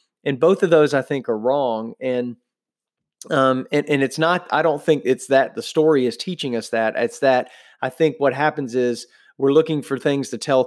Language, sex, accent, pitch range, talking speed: English, male, American, 125-145 Hz, 215 wpm